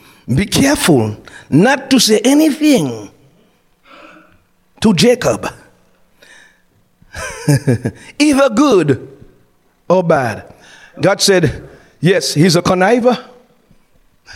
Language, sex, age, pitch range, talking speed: English, male, 50-69, 135-215 Hz, 75 wpm